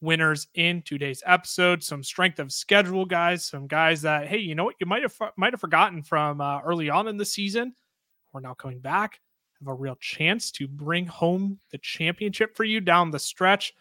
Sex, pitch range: male, 145-185 Hz